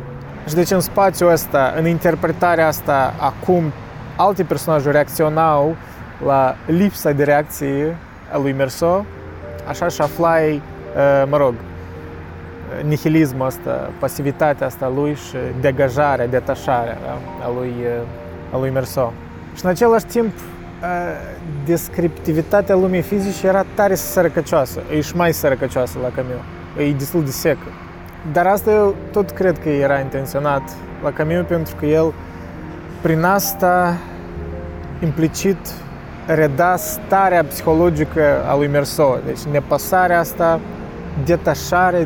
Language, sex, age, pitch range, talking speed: Romanian, male, 20-39, 130-170 Hz, 120 wpm